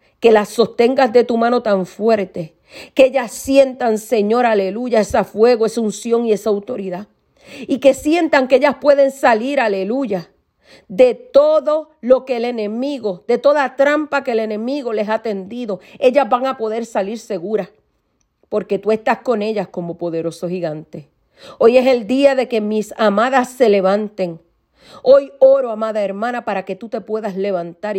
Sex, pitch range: female, 200-265 Hz